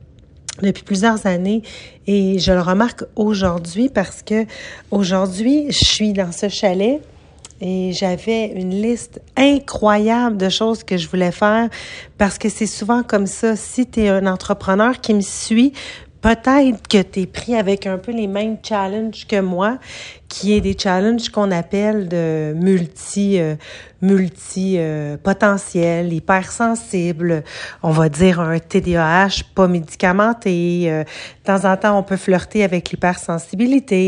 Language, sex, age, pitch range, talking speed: French, female, 40-59, 185-225 Hz, 150 wpm